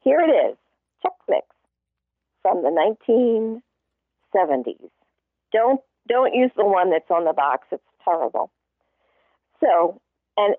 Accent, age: American, 50-69